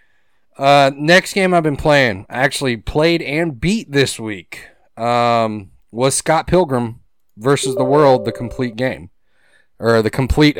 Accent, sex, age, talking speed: American, male, 30-49, 140 wpm